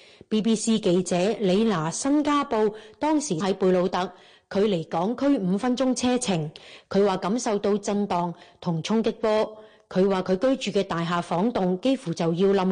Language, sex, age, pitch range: Chinese, female, 30-49, 180-225 Hz